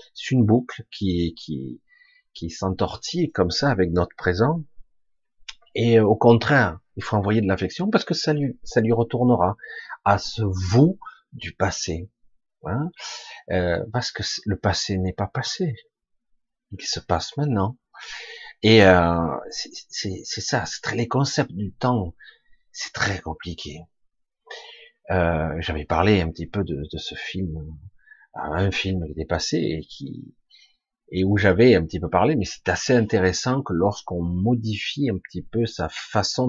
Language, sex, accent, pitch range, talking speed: French, male, French, 95-145 Hz, 160 wpm